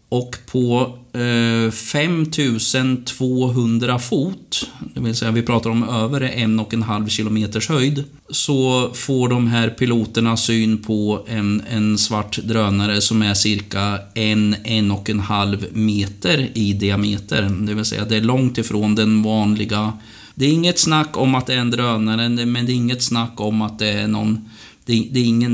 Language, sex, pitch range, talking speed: Swedish, male, 105-125 Hz, 165 wpm